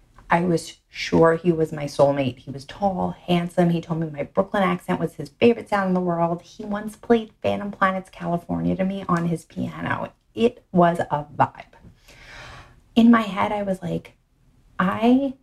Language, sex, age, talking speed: English, female, 30-49, 180 wpm